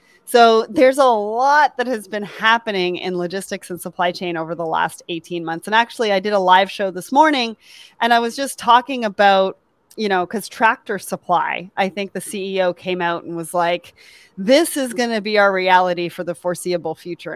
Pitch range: 185-225 Hz